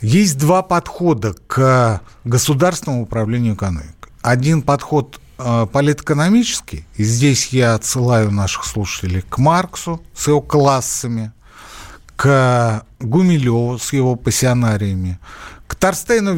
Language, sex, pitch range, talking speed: Russian, male, 110-155 Hz, 105 wpm